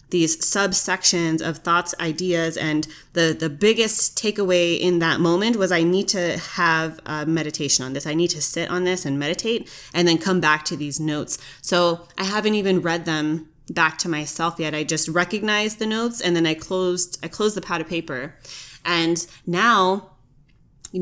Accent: American